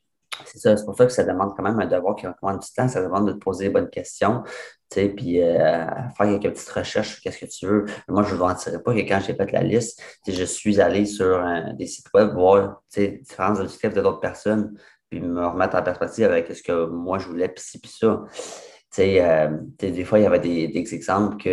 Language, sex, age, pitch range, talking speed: French, male, 30-49, 90-105 Hz, 255 wpm